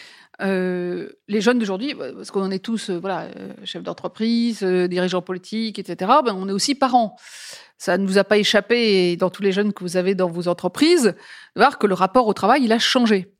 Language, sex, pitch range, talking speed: French, female, 195-260 Hz, 225 wpm